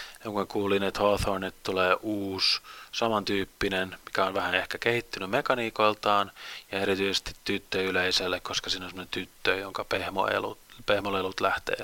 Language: Finnish